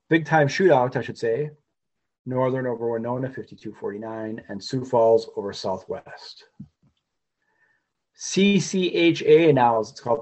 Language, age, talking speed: English, 30-49, 110 wpm